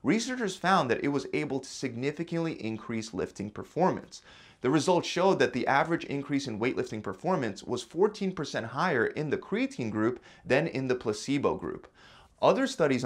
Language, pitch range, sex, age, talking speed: English, 120-175 Hz, male, 30-49, 160 wpm